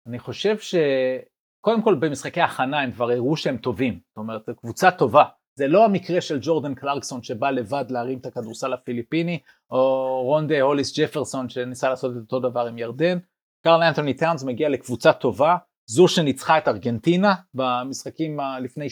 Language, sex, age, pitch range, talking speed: Hebrew, male, 30-49, 125-170 Hz, 55 wpm